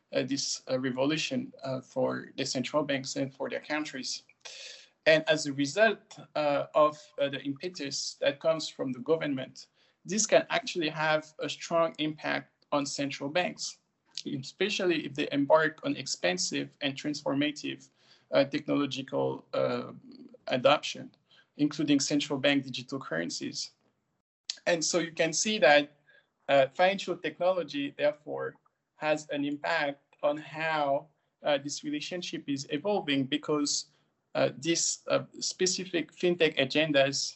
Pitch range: 140-185 Hz